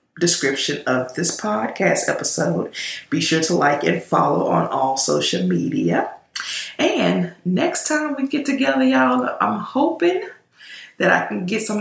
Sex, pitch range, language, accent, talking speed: female, 145-220 Hz, English, American, 145 wpm